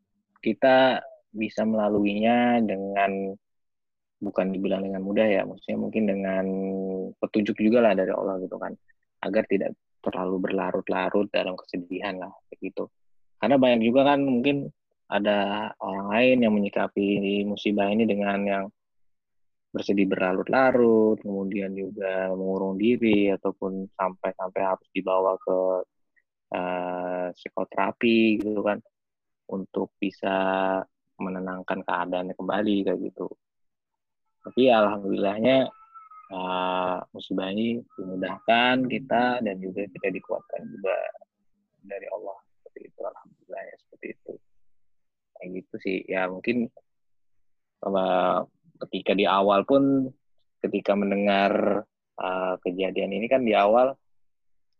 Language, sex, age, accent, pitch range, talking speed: Indonesian, male, 20-39, native, 95-115 Hz, 110 wpm